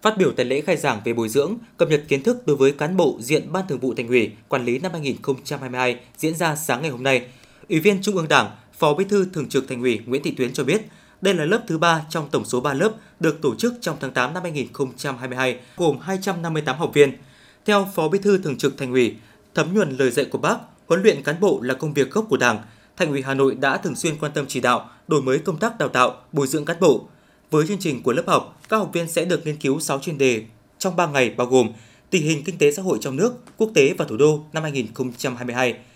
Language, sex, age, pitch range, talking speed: Vietnamese, male, 20-39, 130-180 Hz, 255 wpm